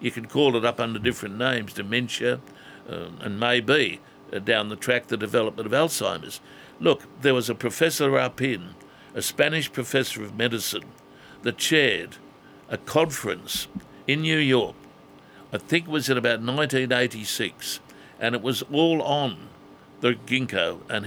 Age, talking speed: 60-79, 150 wpm